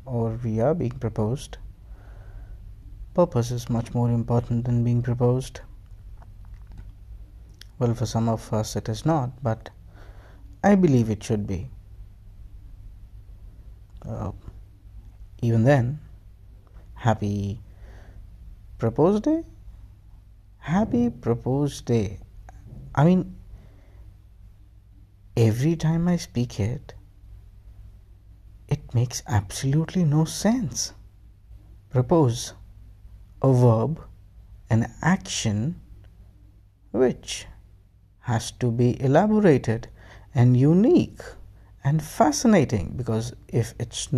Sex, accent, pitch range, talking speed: male, Indian, 100-120 Hz, 90 wpm